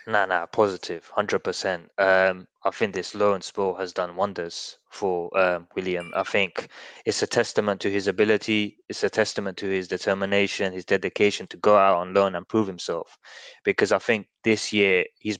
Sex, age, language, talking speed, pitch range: male, 20-39, English, 190 wpm, 95-110 Hz